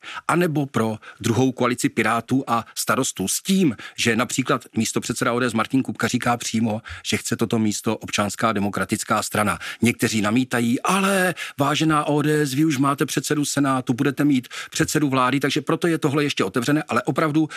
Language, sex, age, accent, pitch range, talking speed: Czech, male, 40-59, native, 115-150 Hz, 165 wpm